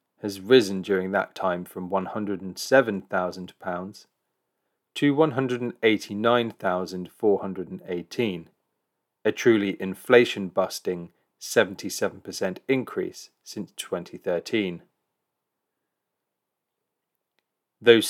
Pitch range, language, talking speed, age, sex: 95-125 Hz, English, 55 wpm, 30-49, male